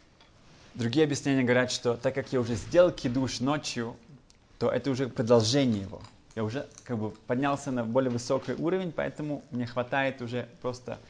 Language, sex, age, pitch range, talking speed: Russian, male, 20-39, 110-135 Hz, 160 wpm